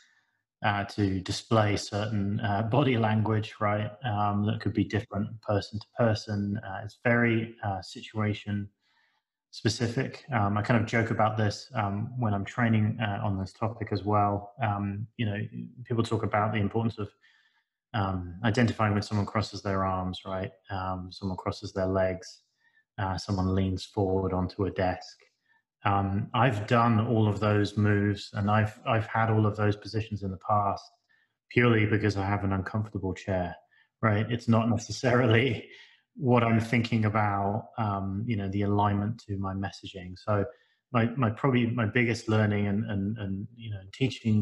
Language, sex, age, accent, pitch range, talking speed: English, male, 20-39, British, 100-115 Hz, 165 wpm